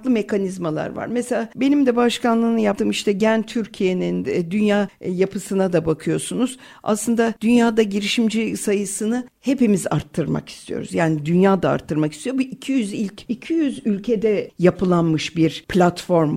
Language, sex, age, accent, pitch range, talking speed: Turkish, female, 60-79, native, 180-245 Hz, 120 wpm